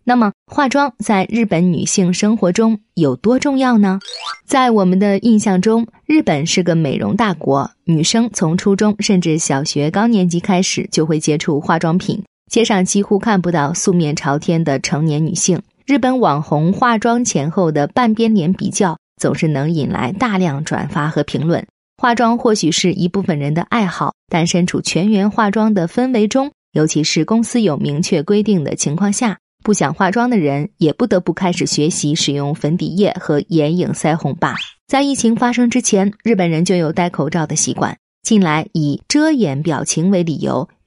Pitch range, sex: 165-220 Hz, female